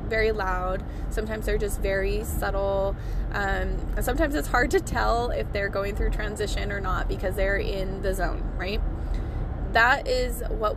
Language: English